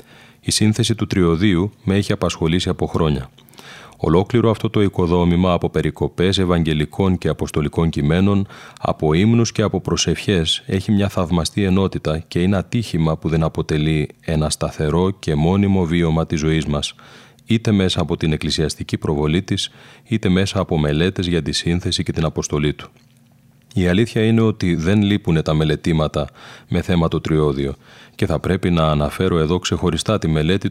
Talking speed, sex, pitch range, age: 160 wpm, male, 80-100 Hz, 30-49